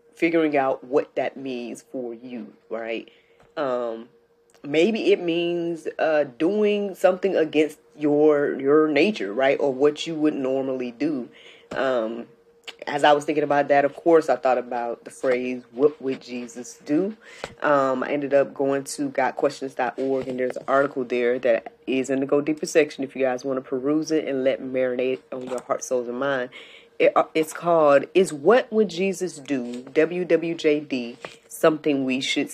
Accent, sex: American, female